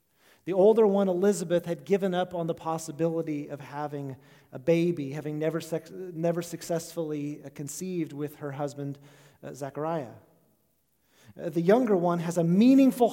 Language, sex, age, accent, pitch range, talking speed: English, male, 40-59, American, 155-190 Hz, 135 wpm